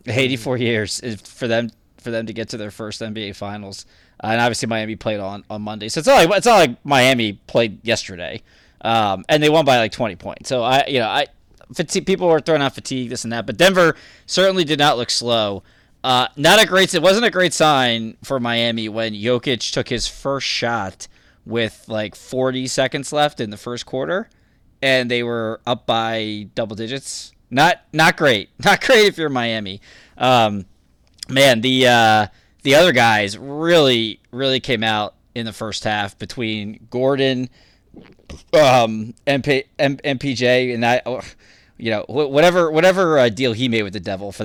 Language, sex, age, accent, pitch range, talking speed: English, male, 20-39, American, 105-135 Hz, 180 wpm